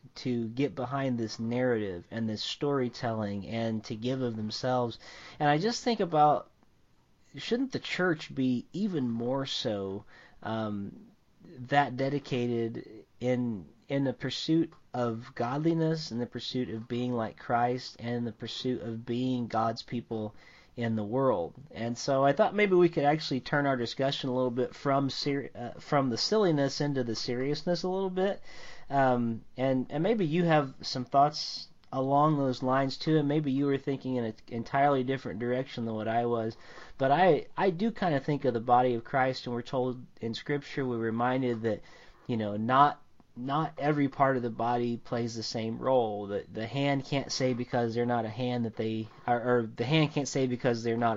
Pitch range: 115-140 Hz